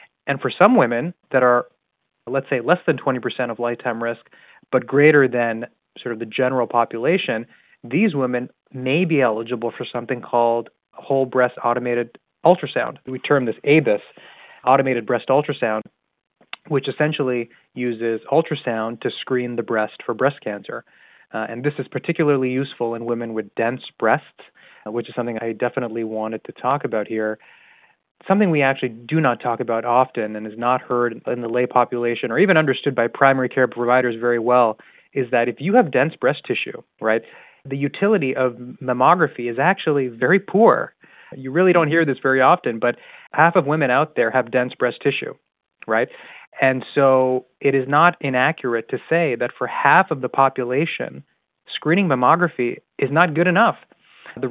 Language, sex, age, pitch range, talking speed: English, male, 20-39, 120-145 Hz, 170 wpm